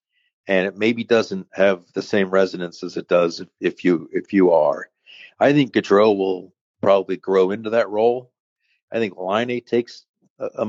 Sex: male